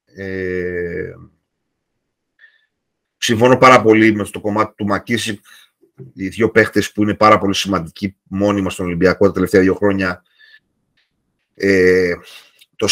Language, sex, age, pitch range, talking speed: Greek, male, 30-49, 95-115 Hz, 125 wpm